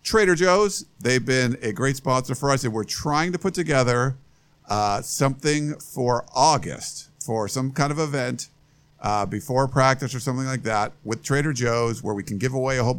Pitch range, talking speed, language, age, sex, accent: 110-140 Hz, 190 wpm, English, 50-69, male, American